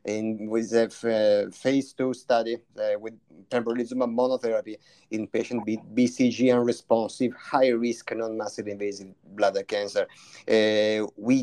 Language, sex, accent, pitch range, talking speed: English, male, Italian, 110-130 Hz, 140 wpm